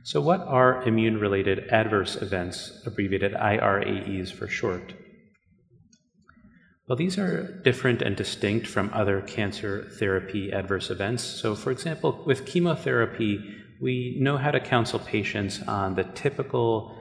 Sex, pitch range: male, 95-120 Hz